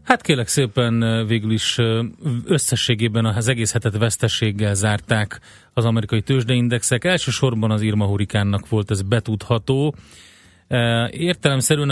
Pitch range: 110-125 Hz